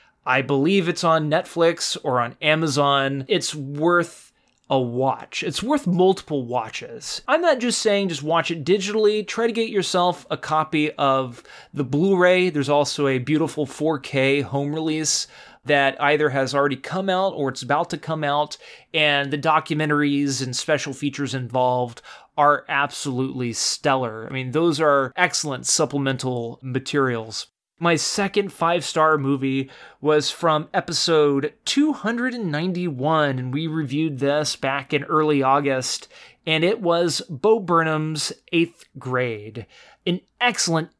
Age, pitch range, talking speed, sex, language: 30-49, 135-170 Hz, 140 wpm, male, English